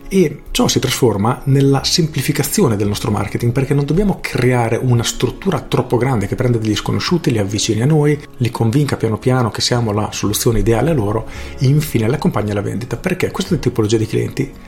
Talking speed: 190 wpm